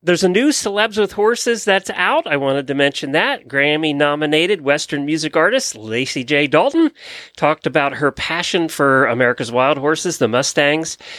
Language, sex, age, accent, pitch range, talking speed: English, male, 40-59, American, 120-165 Hz, 160 wpm